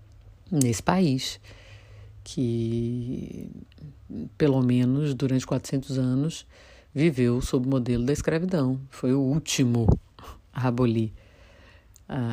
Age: 50-69